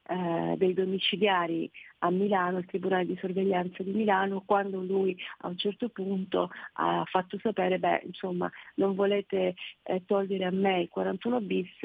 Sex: female